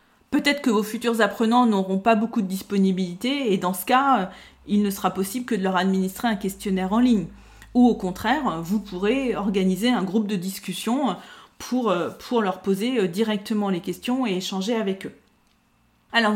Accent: French